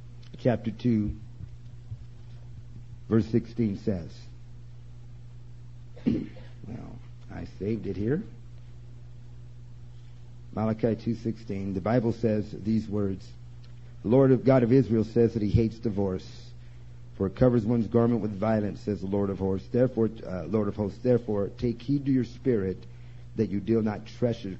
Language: English